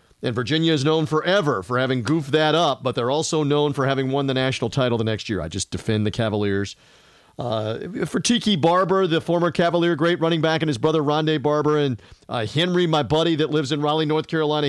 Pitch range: 130-160 Hz